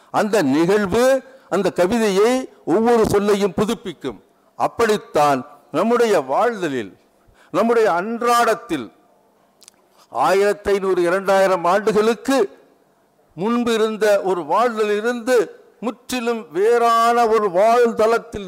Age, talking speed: 60-79, 80 wpm